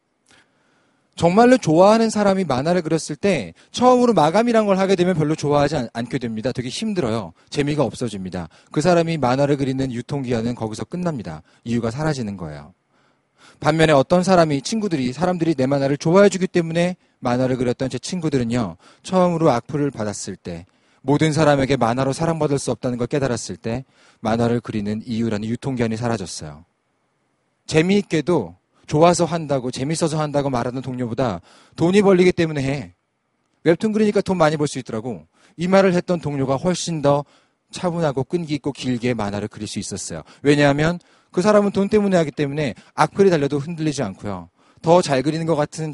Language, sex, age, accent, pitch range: Korean, male, 40-59, native, 125-175 Hz